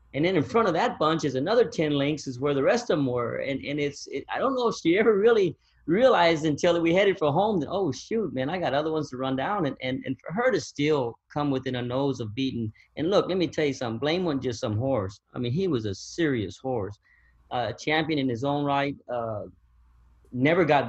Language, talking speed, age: English, 255 wpm, 30-49